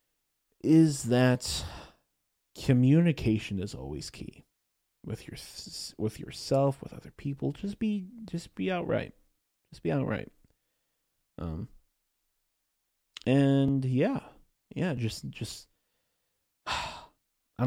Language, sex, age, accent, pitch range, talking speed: English, male, 30-49, American, 100-135 Hz, 95 wpm